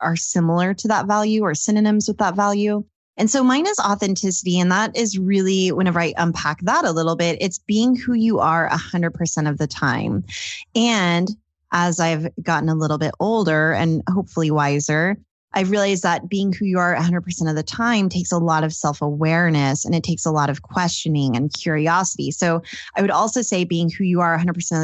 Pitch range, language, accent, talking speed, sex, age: 160-205 Hz, English, American, 200 wpm, female, 20-39